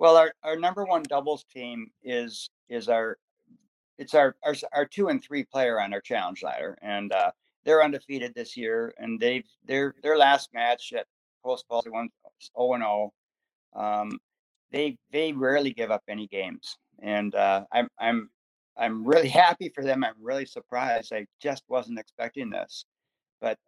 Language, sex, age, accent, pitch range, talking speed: English, male, 60-79, American, 110-145 Hz, 165 wpm